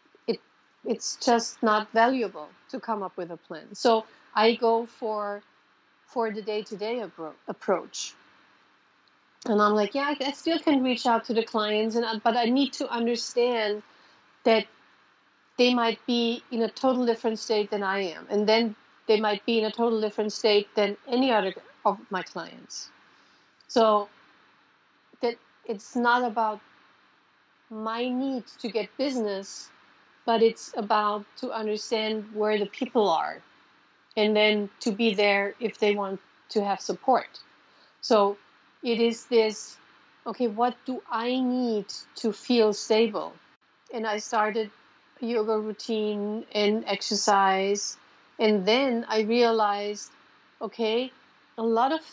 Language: English